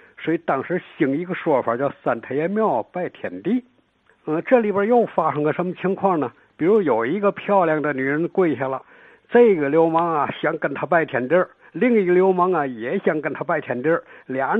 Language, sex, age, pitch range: Chinese, male, 60-79, 140-205 Hz